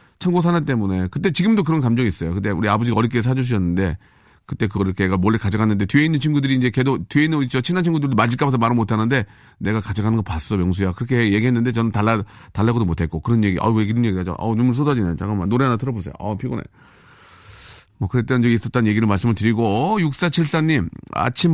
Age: 40-59